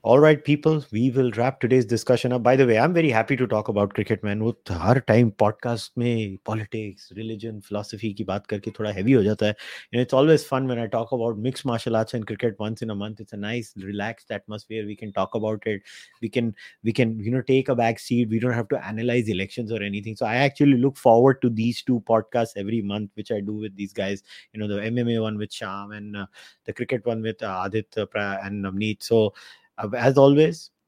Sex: male